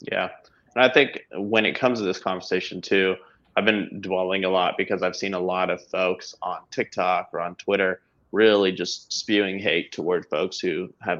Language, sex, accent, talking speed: English, male, American, 195 wpm